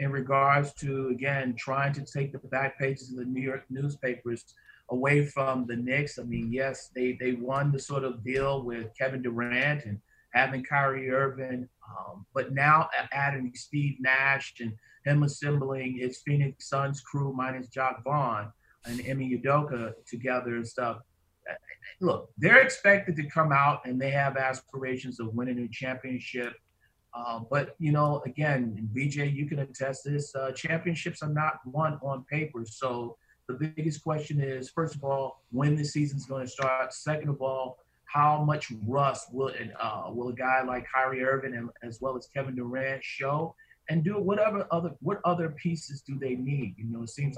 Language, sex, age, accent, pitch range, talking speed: English, male, 40-59, American, 125-145 Hz, 175 wpm